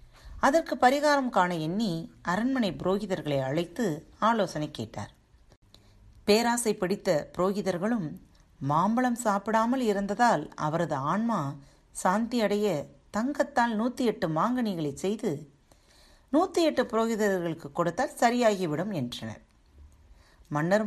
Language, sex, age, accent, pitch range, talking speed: Tamil, female, 40-59, native, 155-225 Hz, 85 wpm